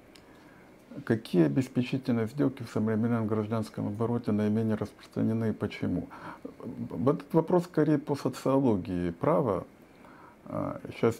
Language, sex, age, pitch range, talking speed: Russian, male, 50-69, 105-135 Hz, 105 wpm